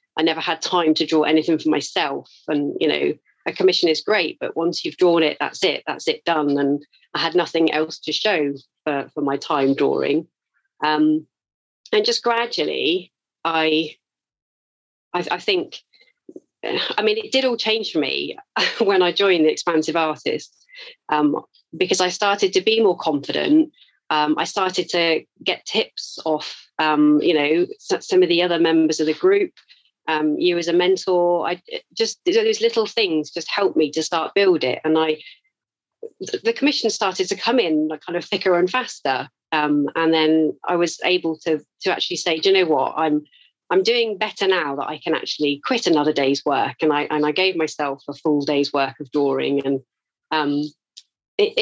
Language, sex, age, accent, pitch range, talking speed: English, female, 40-59, British, 150-235 Hz, 185 wpm